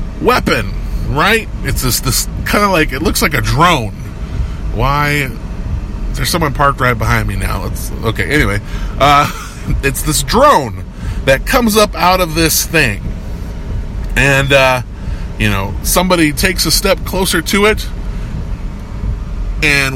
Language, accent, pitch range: English, American, 105-165 Hz